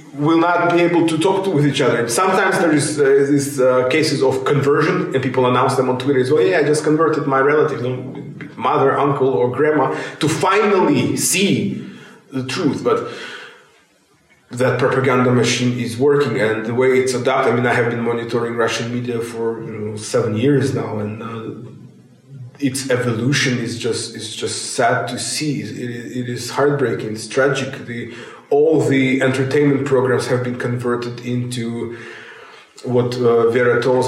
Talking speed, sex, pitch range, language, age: 175 wpm, male, 120-140 Hz, Bulgarian, 20-39